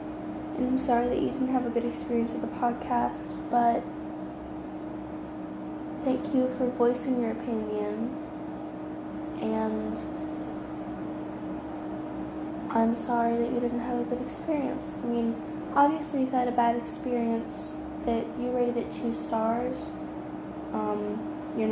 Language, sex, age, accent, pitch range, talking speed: English, female, 10-29, American, 240-285 Hz, 125 wpm